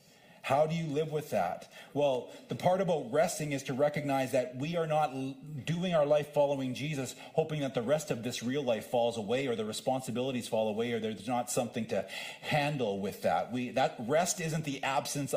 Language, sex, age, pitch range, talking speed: English, male, 40-59, 135-160 Hz, 200 wpm